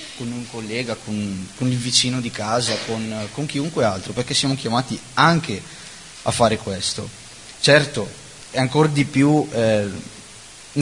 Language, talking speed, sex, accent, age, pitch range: Italian, 145 wpm, male, native, 30-49, 110-135 Hz